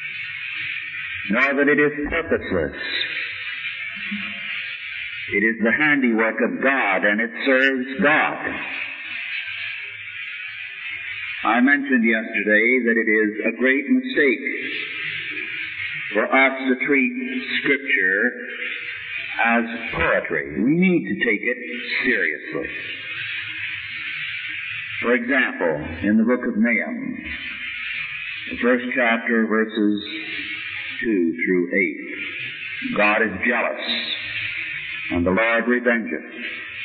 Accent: American